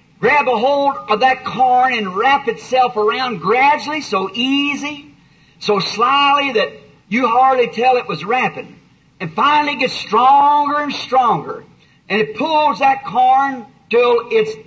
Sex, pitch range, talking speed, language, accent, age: male, 210-290 Hz, 145 wpm, English, American, 50-69